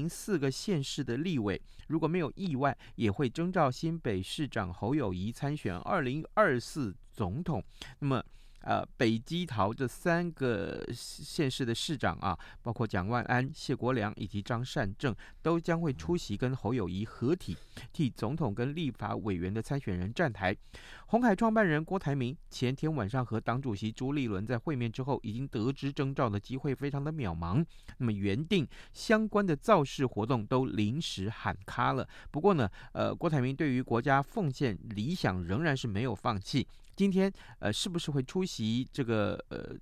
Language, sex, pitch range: Chinese, male, 105-150 Hz